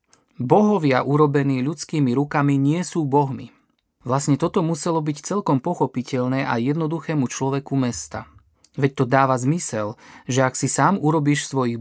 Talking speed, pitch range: 135 wpm, 125-150 Hz